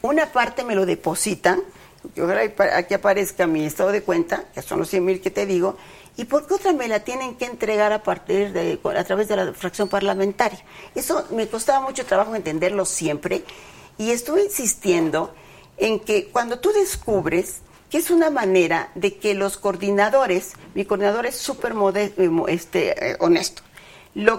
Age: 50-69